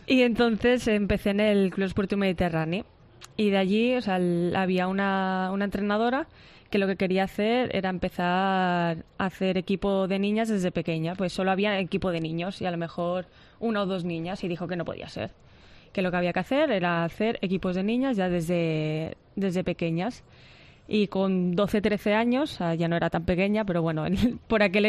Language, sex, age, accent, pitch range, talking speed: Spanish, female, 20-39, Spanish, 180-205 Hz, 195 wpm